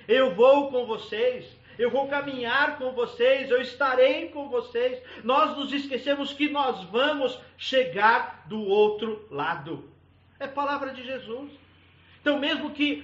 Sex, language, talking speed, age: male, Portuguese, 140 wpm, 50-69